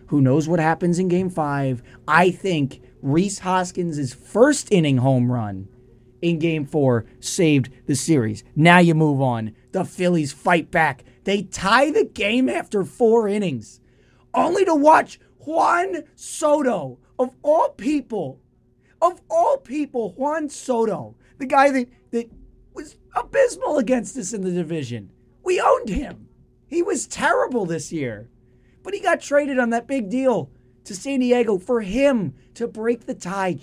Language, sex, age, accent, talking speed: English, male, 30-49, American, 150 wpm